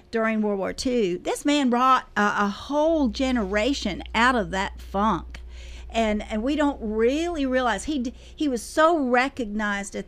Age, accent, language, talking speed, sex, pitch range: 50-69, American, English, 165 wpm, female, 205-245 Hz